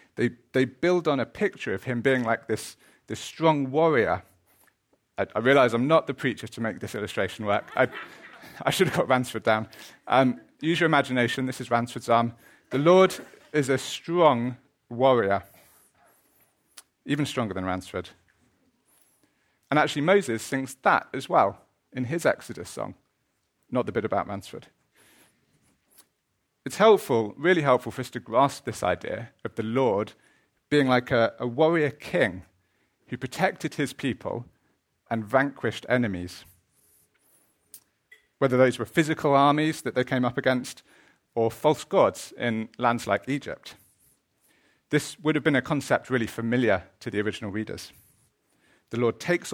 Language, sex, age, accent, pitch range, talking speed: English, male, 40-59, British, 115-145 Hz, 150 wpm